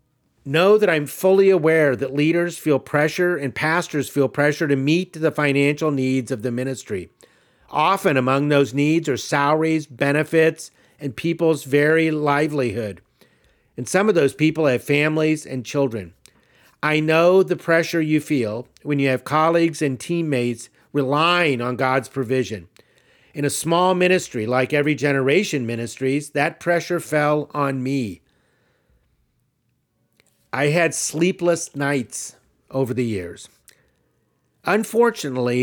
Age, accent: 50-69, American